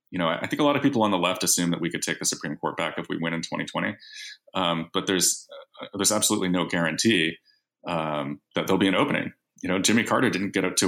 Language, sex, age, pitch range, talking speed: English, male, 30-49, 80-95 Hz, 255 wpm